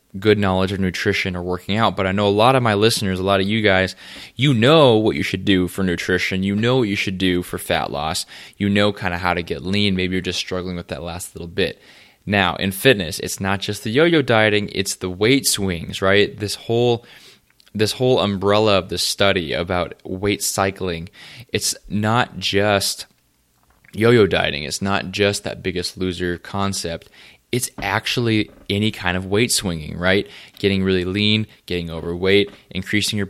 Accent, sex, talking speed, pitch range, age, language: American, male, 190 wpm, 90-105 Hz, 20-39, English